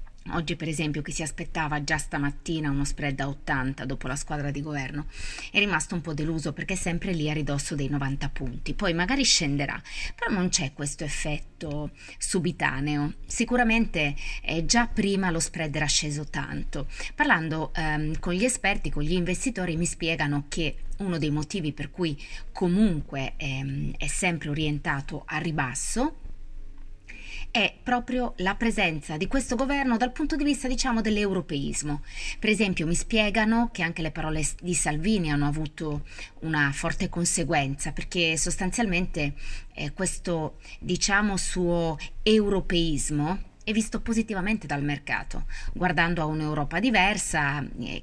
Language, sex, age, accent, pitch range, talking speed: Italian, female, 20-39, native, 145-185 Hz, 145 wpm